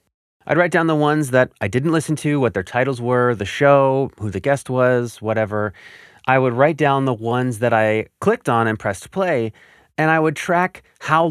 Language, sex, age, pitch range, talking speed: English, male, 30-49, 105-140 Hz, 205 wpm